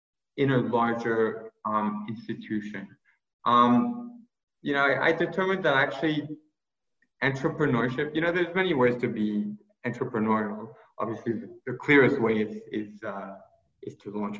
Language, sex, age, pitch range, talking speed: English, male, 20-39, 110-150 Hz, 140 wpm